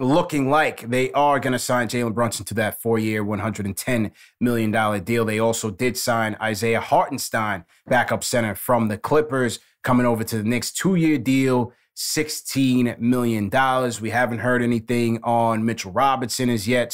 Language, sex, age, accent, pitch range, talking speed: English, male, 30-49, American, 110-130 Hz, 155 wpm